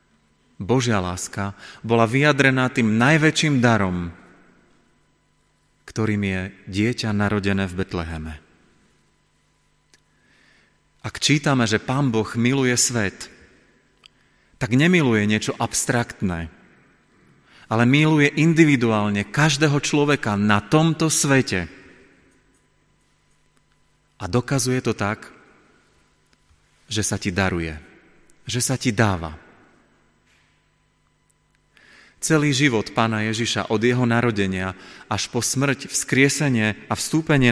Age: 30-49